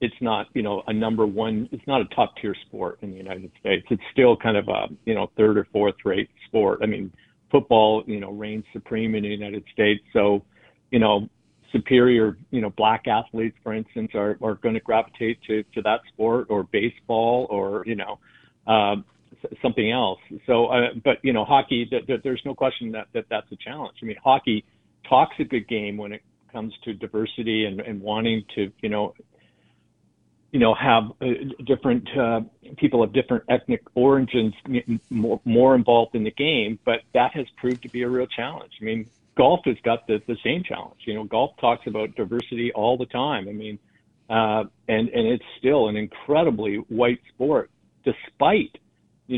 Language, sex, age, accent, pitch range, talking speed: English, male, 50-69, American, 105-120 Hz, 190 wpm